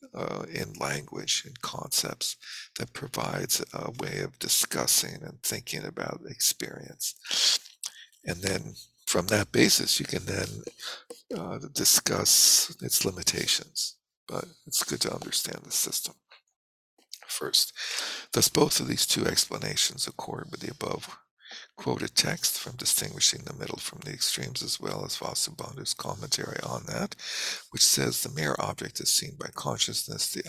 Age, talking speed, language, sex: 60-79, 140 wpm, English, male